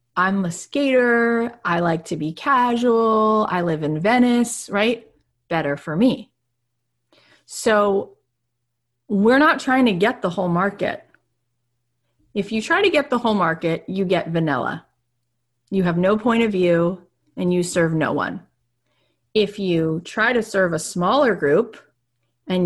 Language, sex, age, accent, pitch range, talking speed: English, female, 30-49, American, 145-205 Hz, 150 wpm